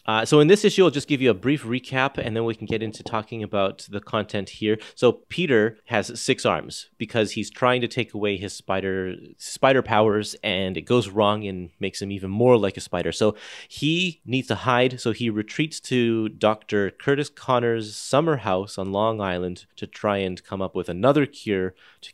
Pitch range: 95-125 Hz